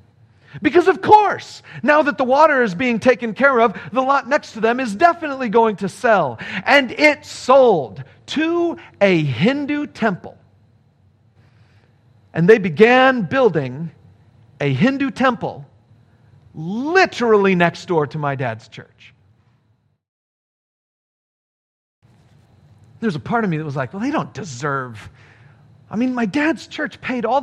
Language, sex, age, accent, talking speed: English, male, 40-59, American, 135 wpm